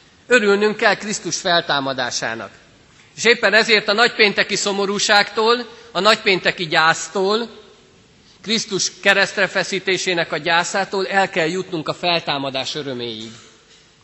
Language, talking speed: Hungarian, 105 wpm